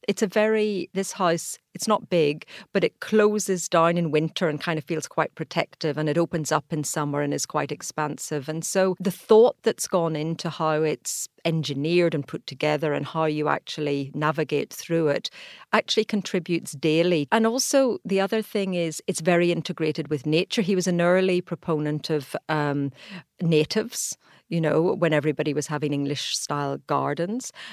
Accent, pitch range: British, 155-185 Hz